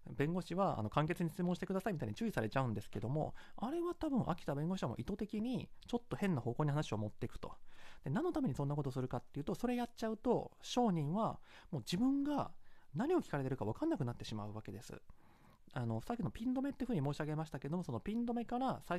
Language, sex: Japanese, male